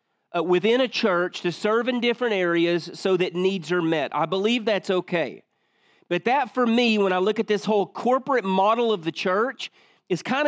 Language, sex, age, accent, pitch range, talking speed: English, male, 40-59, American, 190-245 Hz, 195 wpm